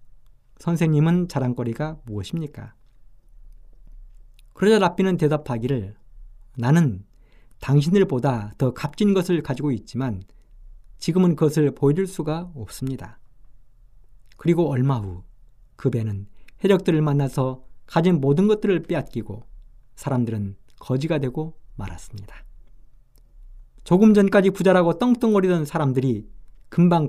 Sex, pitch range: male, 120-170 Hz